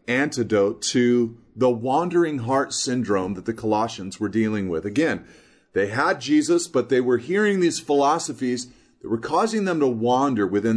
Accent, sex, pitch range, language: American, male, 115-185 Hz, English